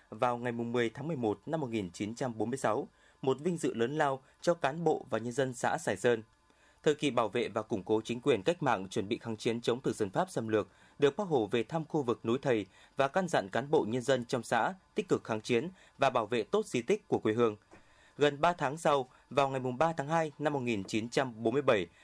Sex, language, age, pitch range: male, Vietnamese, 20-39, 115-150 Hz